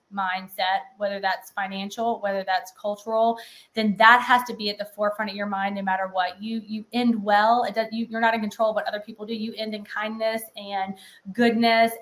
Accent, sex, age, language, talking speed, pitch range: American, female, 20-39, English, 215 wpm, 200-230 Hz